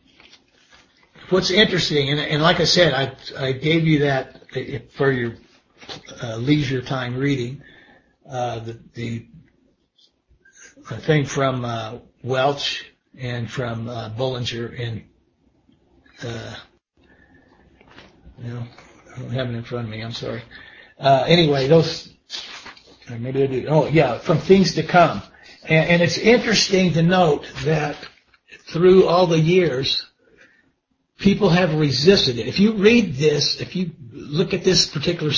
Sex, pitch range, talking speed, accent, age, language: male, 130-170 Hz, 130 wpm, American, 60-79, English